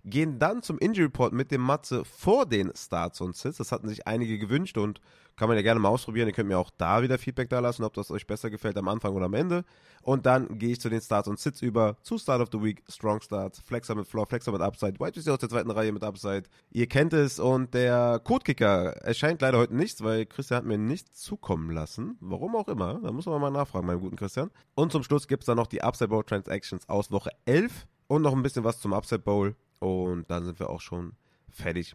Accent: German